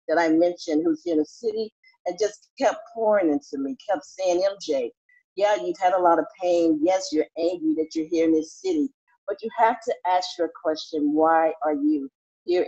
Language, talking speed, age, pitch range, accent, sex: English, 210 wpm, 50-69, 160-220 Hz, American, female